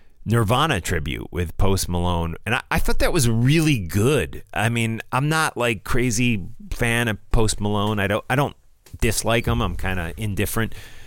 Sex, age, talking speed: male, 30-49, 180 wpm